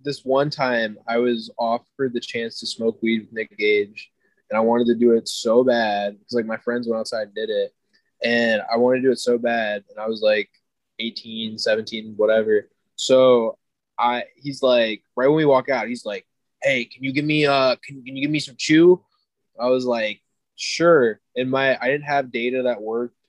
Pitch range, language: 110-130 Hz, English